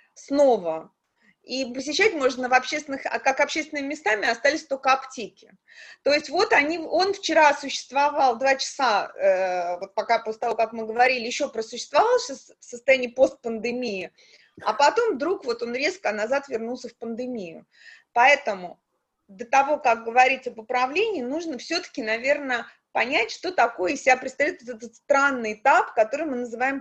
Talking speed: 150 wpm